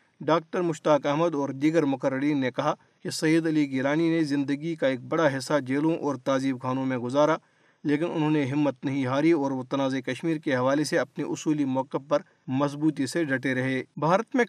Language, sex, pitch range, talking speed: Urdu, male, 140-165 Hz, 195 wpm